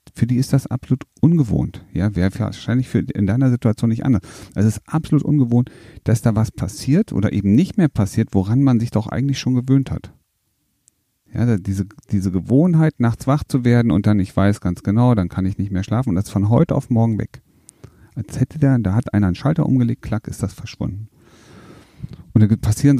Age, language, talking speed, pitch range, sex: 40-59, German, 210 wpm, 95-120 Hz, male